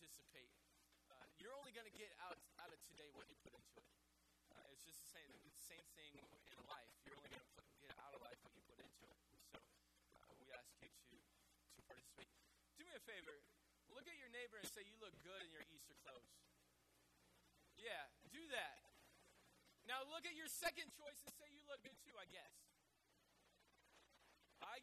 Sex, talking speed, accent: male, 195 wpm, American